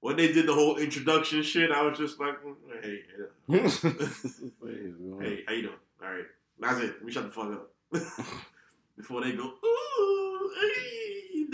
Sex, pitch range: male, 115-165 Hz